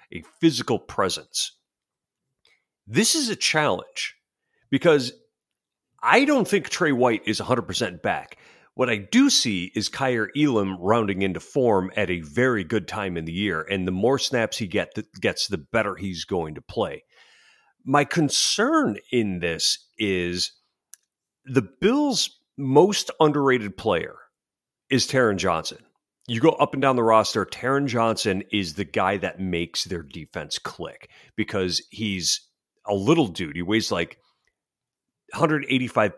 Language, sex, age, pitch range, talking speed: English, male, 40-59, 105-170 Hz, 140 wpm